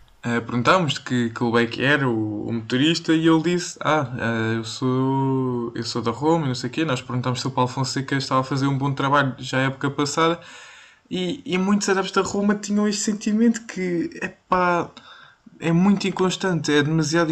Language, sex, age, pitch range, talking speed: Portuguese, male, 20-39, 120-160 Hz, 210 wpm